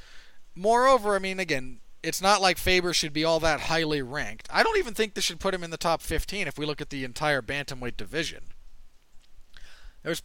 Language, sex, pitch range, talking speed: English, male, 120-175 Hz, 205 wpm